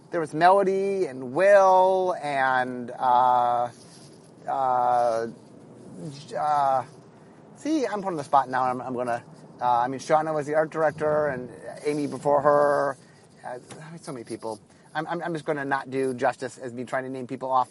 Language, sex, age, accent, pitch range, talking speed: English, male, 30-49, American, 140-200 Hz, 170 wpm